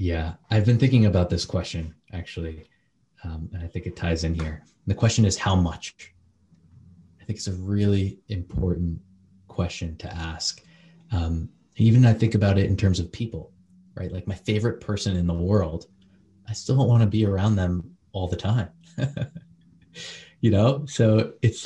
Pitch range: 90-110 Hz